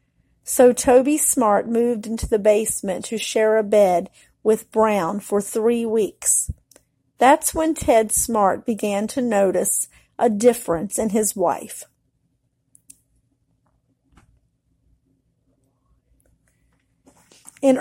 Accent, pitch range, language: American, 210-250 Hz, English